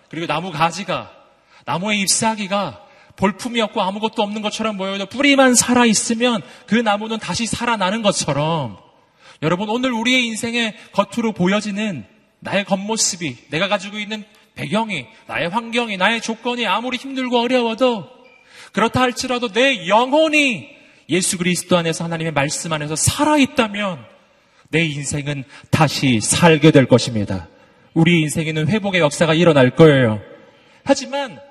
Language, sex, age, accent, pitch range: Korean, male, 30-49, native, 155-255 Hz